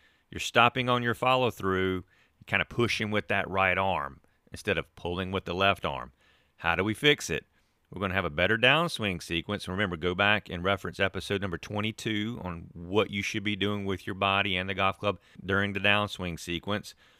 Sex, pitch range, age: male, 90-105 Hz, 40-59